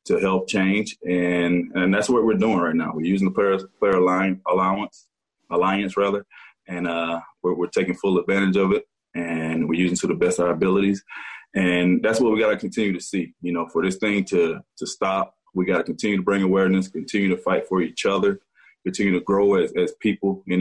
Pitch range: 90-100 Hz